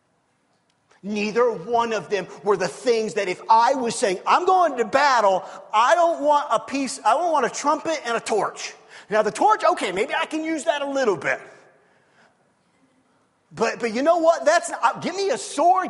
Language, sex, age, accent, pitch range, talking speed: English, male, 40-59, American, 195-255 Hz, 195 wpm